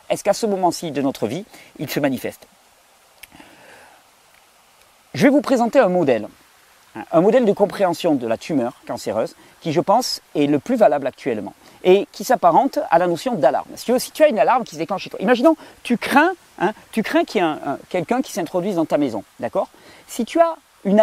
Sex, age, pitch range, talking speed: male, 40-59, 180-260 Hz, 190 wpm